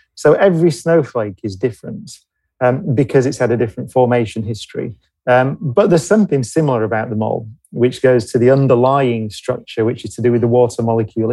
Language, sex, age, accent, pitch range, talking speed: English, male, 30-49, British, 115-150 Hz, 185 wpm